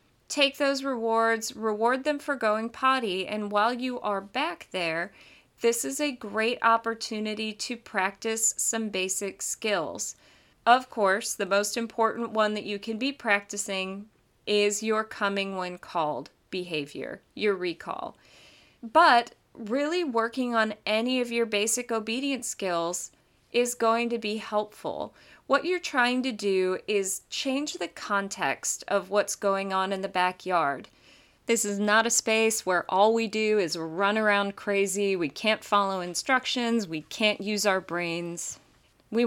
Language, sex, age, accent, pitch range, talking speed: English, female, 30-49, American, 195-235 Hz, 150 wpm